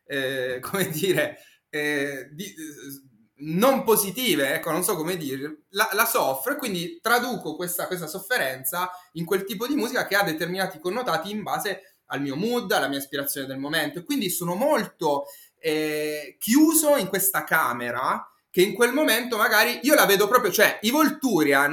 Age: 20-39